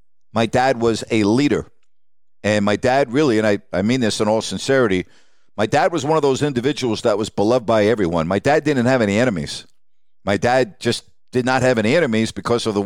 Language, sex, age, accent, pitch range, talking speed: English, male, 50-69, American, 110-135 Hz, 215 wpm